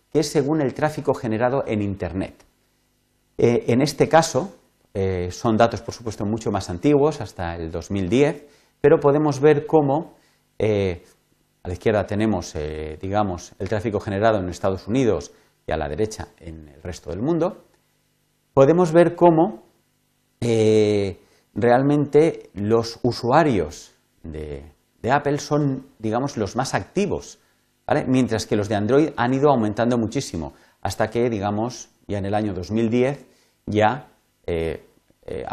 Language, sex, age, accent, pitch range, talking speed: Spanish, male, 40-59, Spanish, 95-130 Hz, 145 wpm